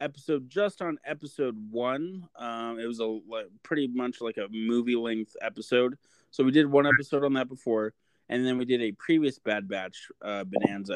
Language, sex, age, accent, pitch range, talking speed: English, male, 20-39, American, 110-135 Hz, 180 wpm